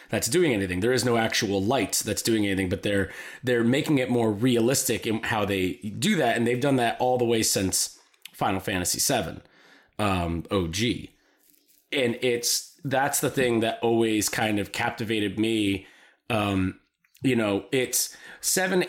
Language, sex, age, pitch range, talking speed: English, male, 30-49, 105-125 Hz, 170 wpm